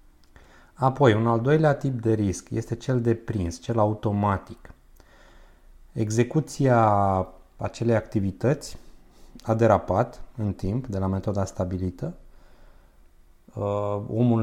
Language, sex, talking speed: Romanian, male, 105 wpm